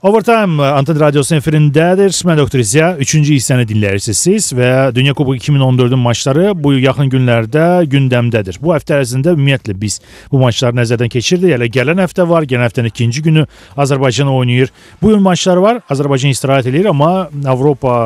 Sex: male